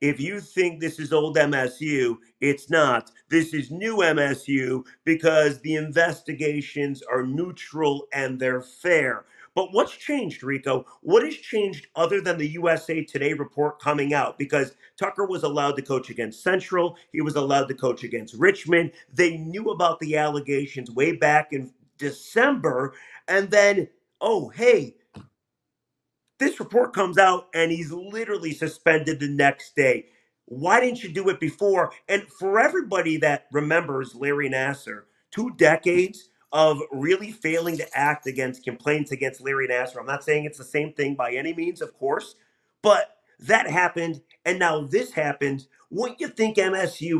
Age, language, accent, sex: 40-59, English, American, male